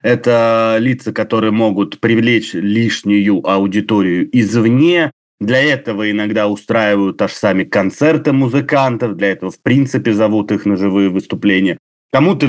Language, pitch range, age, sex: Russian, 110-145 Hz, 30-49, male